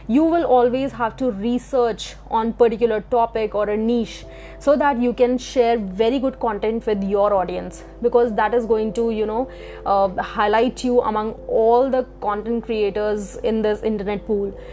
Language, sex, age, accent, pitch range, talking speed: English, female, 20-39, Indian, 215-245 Hz, 170 wpm